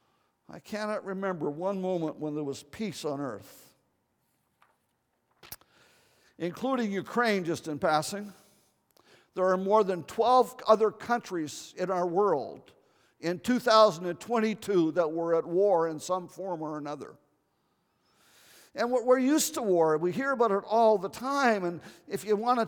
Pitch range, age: 185-240 Hz, 50-69